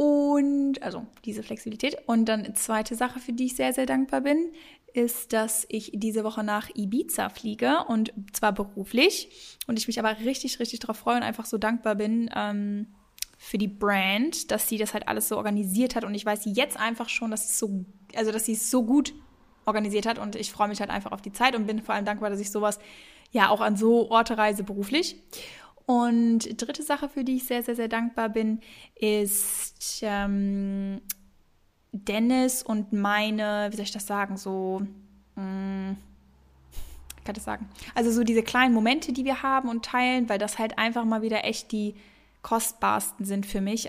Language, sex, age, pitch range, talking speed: German, female, 10-29, 205-235 Hz, 185 wpm